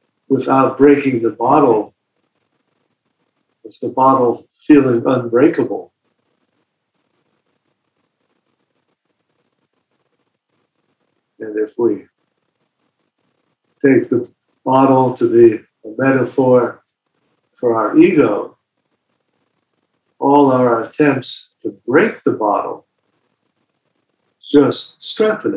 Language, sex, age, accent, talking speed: English, male, 60-79, American, 75 wpm